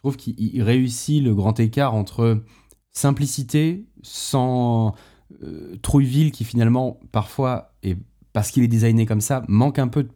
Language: French